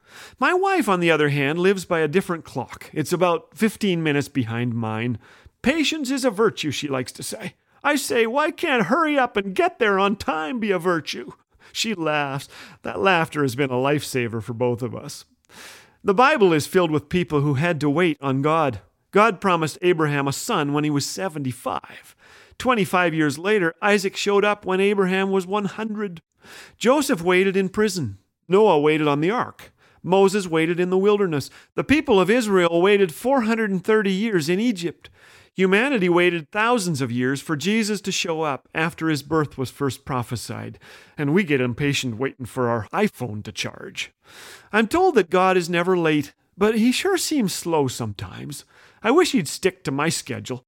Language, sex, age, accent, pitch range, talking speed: English, male, 40-59, American, 140-205 Hz, 180 wpm